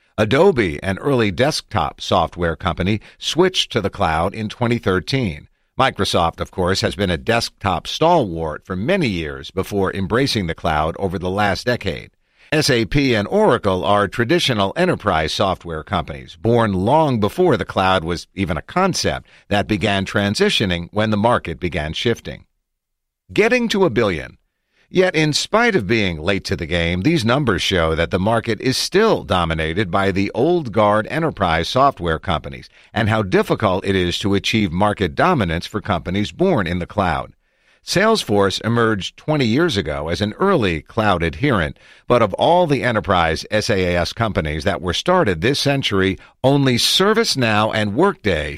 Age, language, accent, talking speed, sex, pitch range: 50-69, English, American, 155 wpm, male, 90-120 Hz